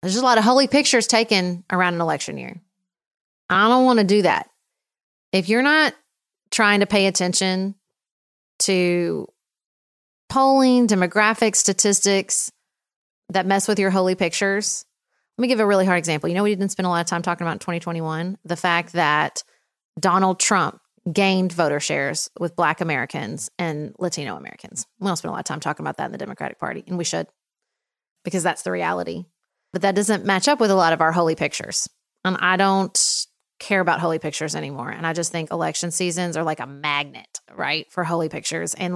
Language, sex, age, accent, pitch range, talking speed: English, female, 30-49, American, 175-230 Hz, 195 wpm